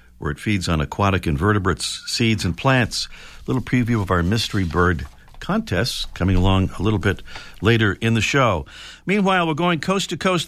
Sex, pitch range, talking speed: male, 105-145 Hz, 185 wpm